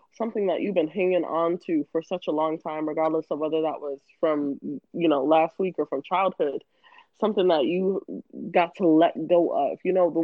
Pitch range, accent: 155-205 Hz, American